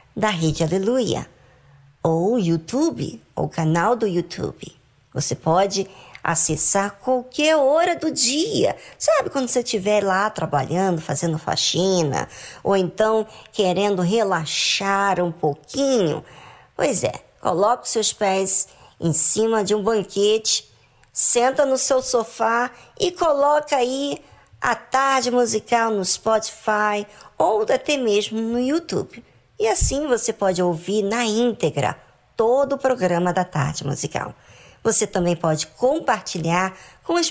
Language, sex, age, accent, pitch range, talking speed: Portuguese, male, 50-69, Brazilian, 185-265 Hz, 125 wpm